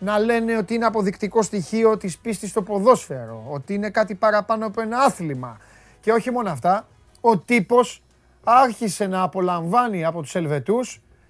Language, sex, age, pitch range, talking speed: Greek, male, 30-49, 150-225 Hz, 155 wpm